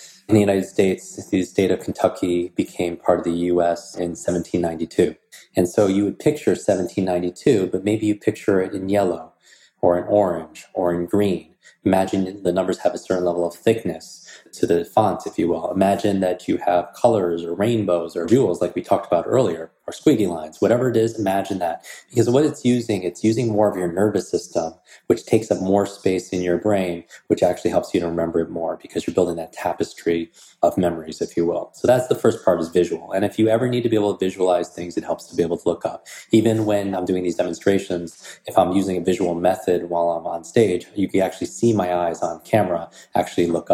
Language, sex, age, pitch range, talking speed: English, male, 20-39, 85-100 Hz, 220 wpm